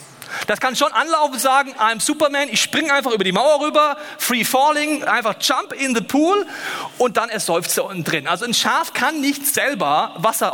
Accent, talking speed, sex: German, 205 wpm, male